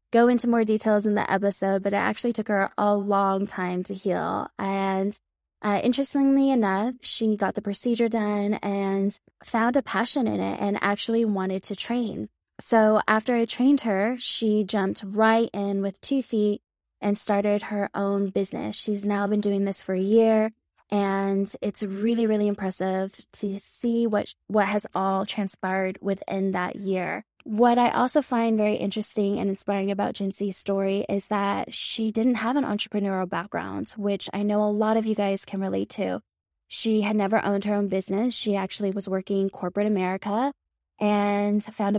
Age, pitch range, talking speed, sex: 20-39, 195-220 Hz, 175 wpm, female